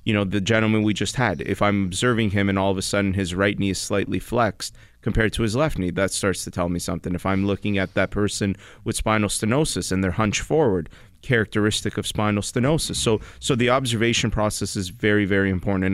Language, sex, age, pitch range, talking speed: English, male, 30-49, 95-110 Hz, 220 wpm